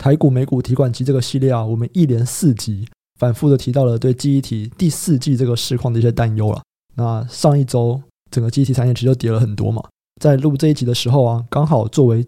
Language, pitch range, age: Chinese, 120-145 Hz, 20-39